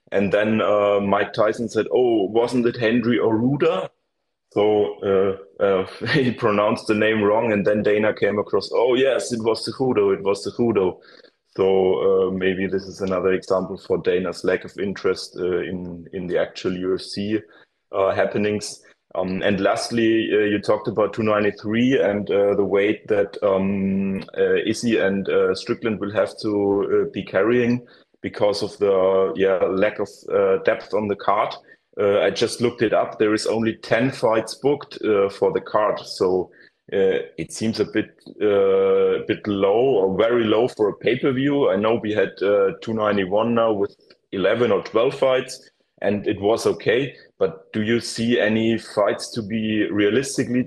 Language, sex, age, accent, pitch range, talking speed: English, male, 30-49, German, 100-135 Hz, 175 wpm